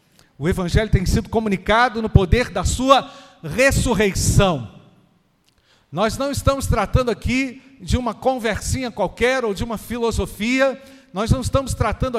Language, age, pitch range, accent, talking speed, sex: Portuguese, 50-69, 140-220 Hz, Brazilian, 135 wpm, male